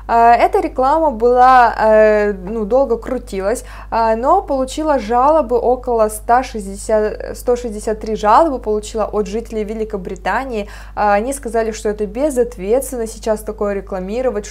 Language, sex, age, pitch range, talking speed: Russian, female, 20-39, 205-245 Hz, 105 wpm